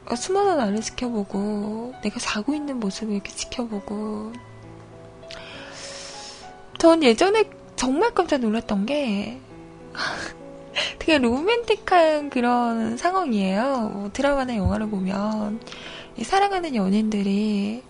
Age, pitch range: 20-39, 215-320 Hz